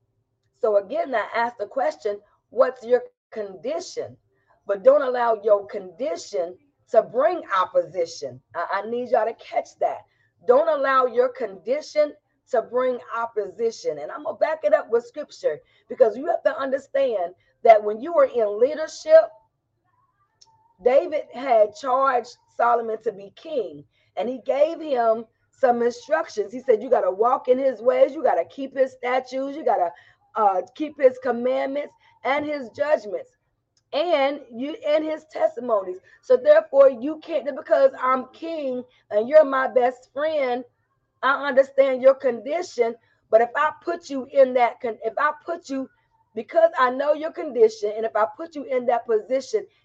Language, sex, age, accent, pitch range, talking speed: English, female, 40-59, American, 230-310 Hz, 160 wpm